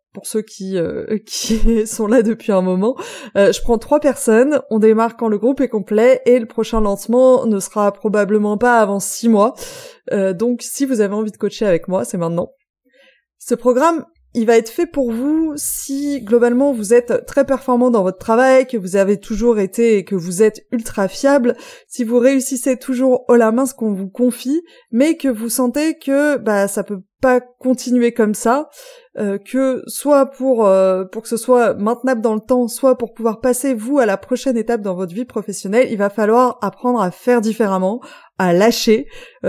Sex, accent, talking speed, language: female, French, 200 wpm, French